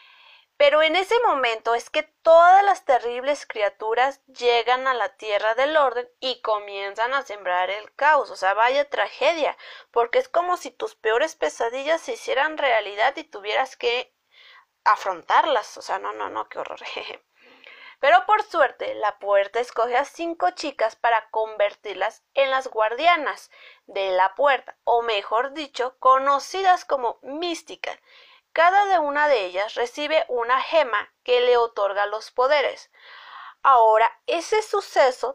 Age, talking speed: 30-49, 145 wpm